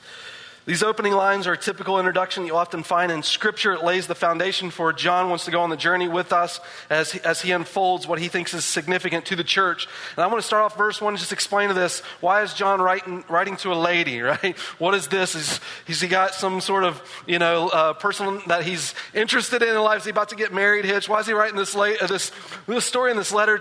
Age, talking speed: 40-59, 255 wpm